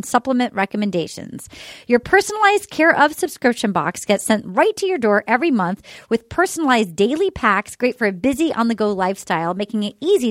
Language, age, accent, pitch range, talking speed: English, 30-49, American, 210-285 Hz, 180 wpm